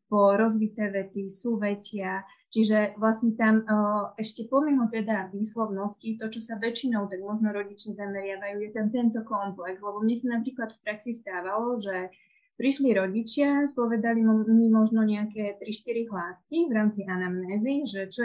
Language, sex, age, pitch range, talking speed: Slovak, female, 20-39, 205-230 Hz, 145 wpm